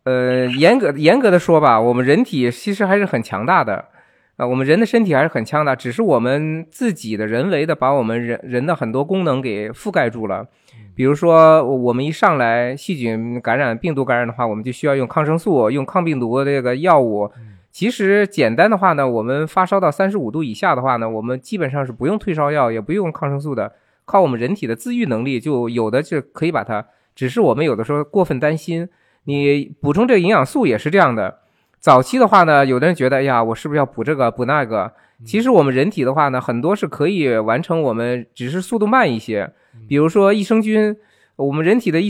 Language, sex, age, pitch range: Chinese, male, 20-39, 120-170 Hz